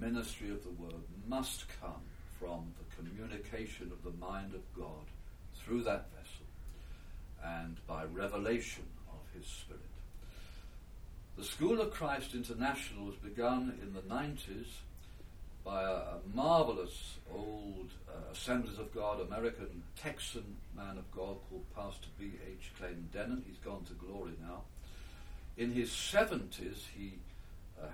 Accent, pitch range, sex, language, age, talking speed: British, 85-105 Hz, male, English, 60-79, 135 wpm